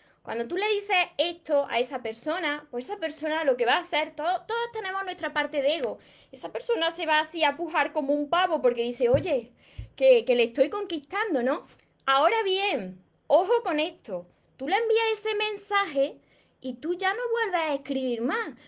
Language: Spanish